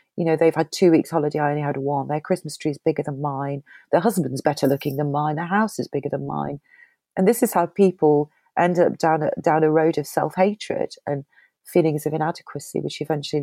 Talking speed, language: 225 wpm, English